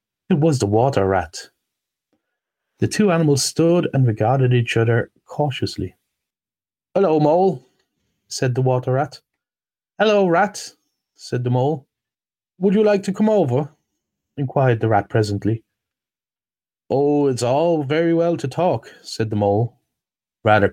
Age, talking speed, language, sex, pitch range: 30-49, 135 wpm, English, male, 115-155 Hz